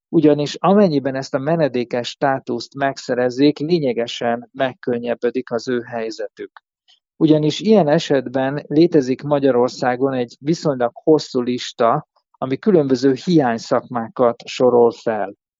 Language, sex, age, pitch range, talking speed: Hungarian, male, 50-69, 120-145 Hz, 100 wpm